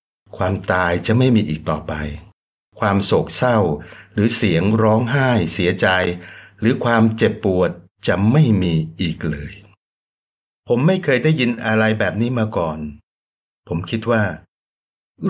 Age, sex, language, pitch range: 60-79, male, Thai, 90-115 Hz